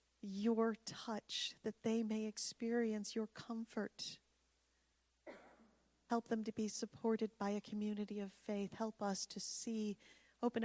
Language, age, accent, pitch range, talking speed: English, 40-59, American, 175-225 Hz, 130 wpm